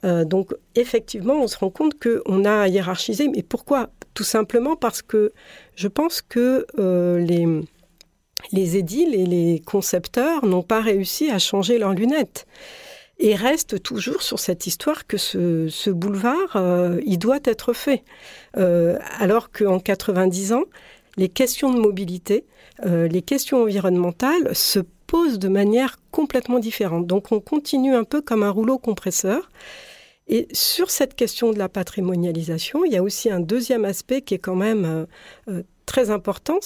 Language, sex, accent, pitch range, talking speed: French, female, French, 185-245 Hz, 155 wpm